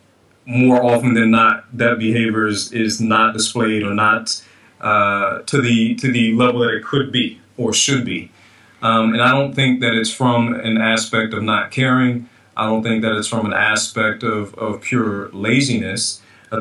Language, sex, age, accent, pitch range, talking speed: English, male, 30-49, American, 110-120 Hz, 185 wpm